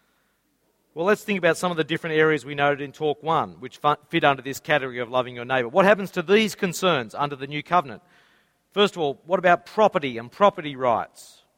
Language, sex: English, male